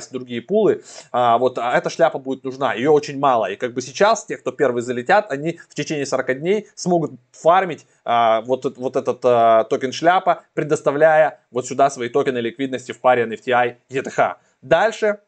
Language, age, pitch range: Russian, 20-39, 130-170 Hz